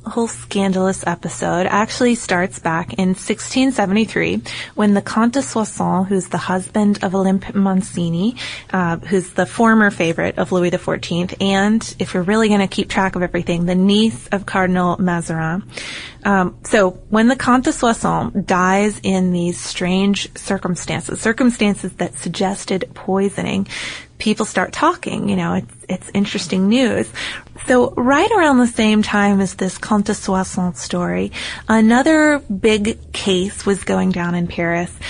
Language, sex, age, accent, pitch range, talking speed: English, female, 20-39, American, 185-225 Hz, 145 wpm